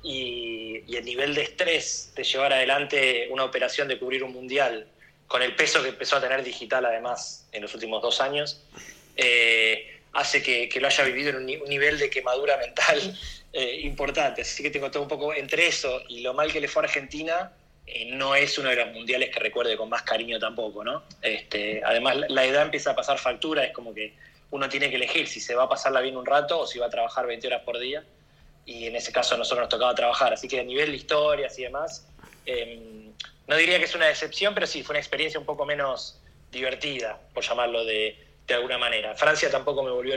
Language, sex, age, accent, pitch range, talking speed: Spanish, male, 20-39, Argentinian, 120-150 Hz, 220 wpm